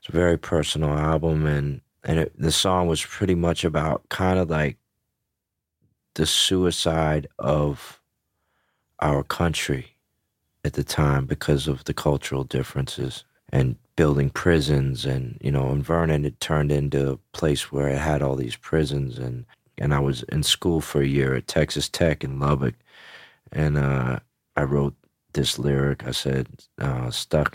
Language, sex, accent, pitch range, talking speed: English, male, American, 70-75 Hz, 150 wpm